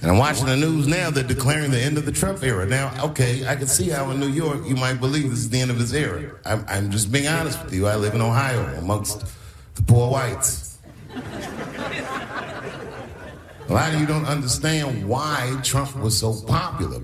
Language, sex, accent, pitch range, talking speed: English, male, American, 110-150 Hz, 210 wpm